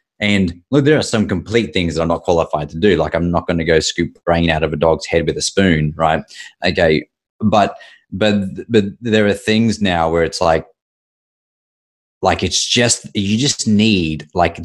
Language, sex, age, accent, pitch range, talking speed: English, male, 20-39, Australian, 80-100 Hz, 195 wpm